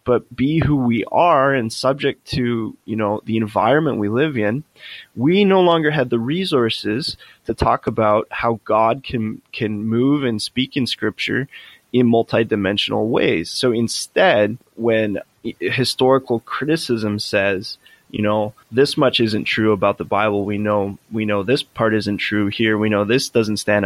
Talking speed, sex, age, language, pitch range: 165 wpm, male, 20-39, English, 105-135 Hz